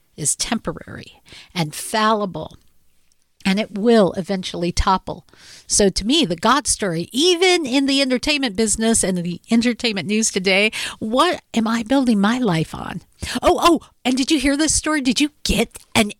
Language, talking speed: English, 165 wpm